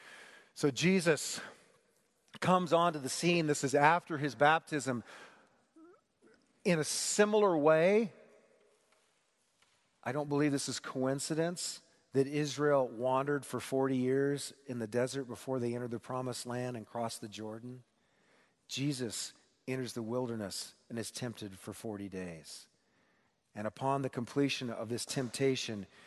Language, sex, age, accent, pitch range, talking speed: English, male, 40-59, American, 130-175 Hz, 130 wpm